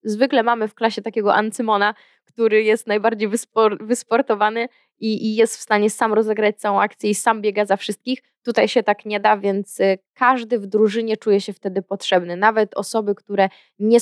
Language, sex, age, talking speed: Polish, female, 20-39, 180 wpm